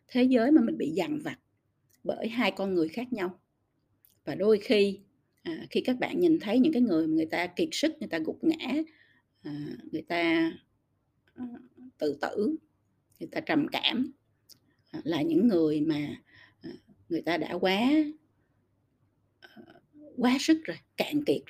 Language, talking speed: Vietnamese, 150 wpm